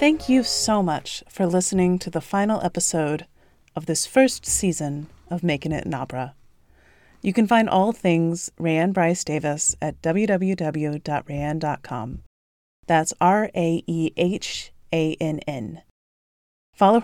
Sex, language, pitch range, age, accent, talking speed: female, English, 150-185 Hz, 30-49, American, 135 wpm